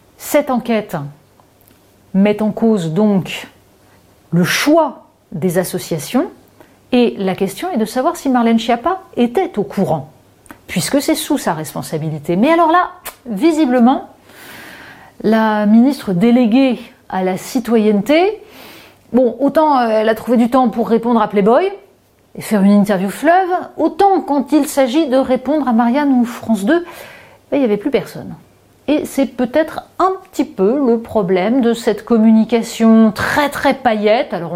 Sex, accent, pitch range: female, French, 190-280 Hz